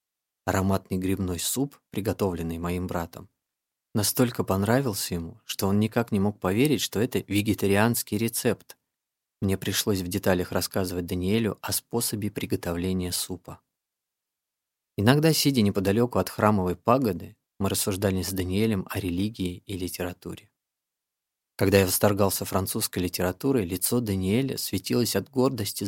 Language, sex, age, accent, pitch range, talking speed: Russian, male, 20-39, native, 95-115 Hz, 125 wpm